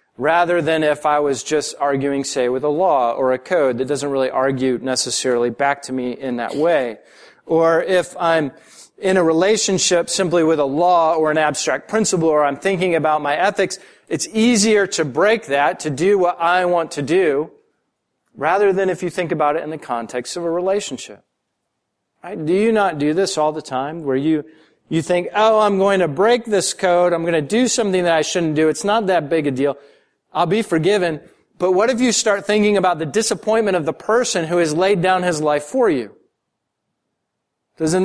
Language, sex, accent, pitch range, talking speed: English, male, American, 145-190 Hz, 200 wpm